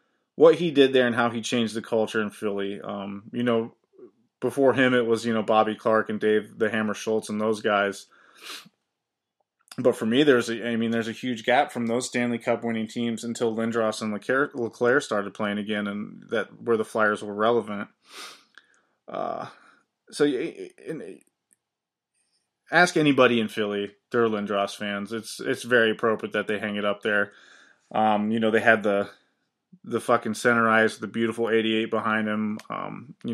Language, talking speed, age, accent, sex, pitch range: English, 185 wpm, 20-39, American, male, 105-120 Hz